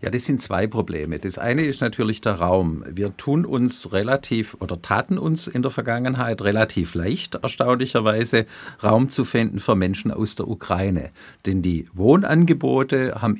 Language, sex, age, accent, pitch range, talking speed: German, male, 50-69, German, 100-130 Hz, 160 wpm